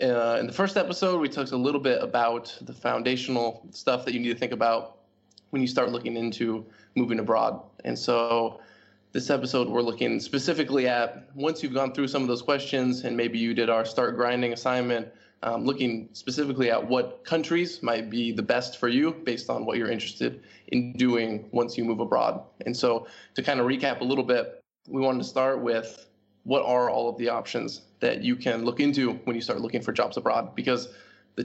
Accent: American